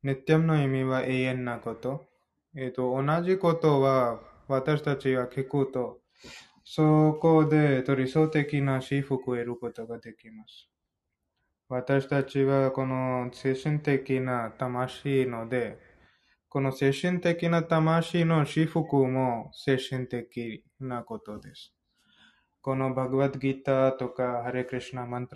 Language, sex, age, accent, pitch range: Japanese, male, 20-39, Indian, 125-145 Hz